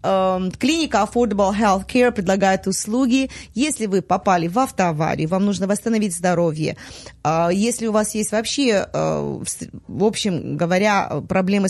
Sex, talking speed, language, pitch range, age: female, 120 wpm, Russian, 180-220 Hz, 30-49